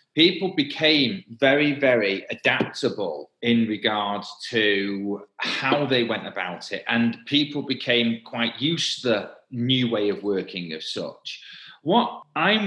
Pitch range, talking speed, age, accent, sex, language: 110-135 Hz, 135 wpm, 30-49, British, male, English